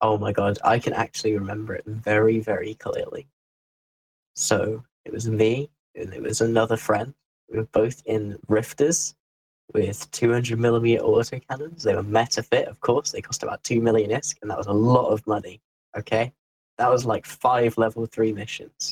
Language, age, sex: English, 10-29, male